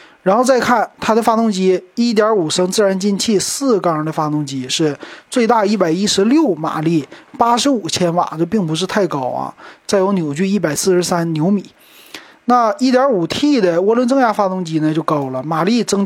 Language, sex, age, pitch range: Chinese, male, 30-49, 160-220 Hz